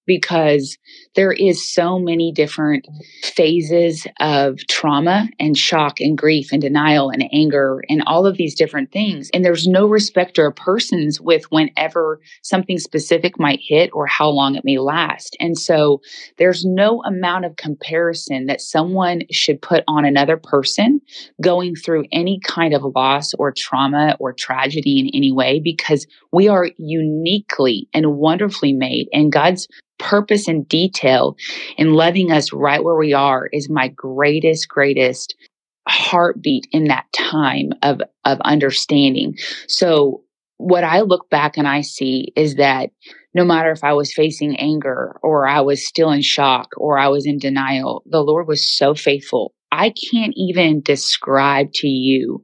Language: English